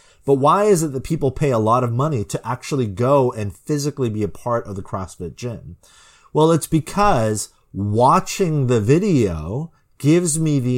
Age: 30-49